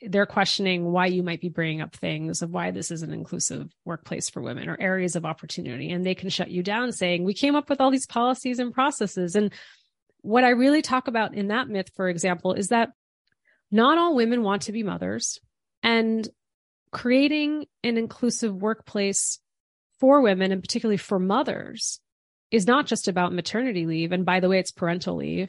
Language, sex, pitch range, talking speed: English, female, 170-225 Hz, 195 wpm